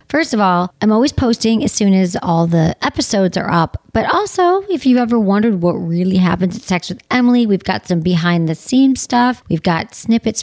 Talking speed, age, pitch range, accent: 215 wpm, 40-59, 180-245 Hz, American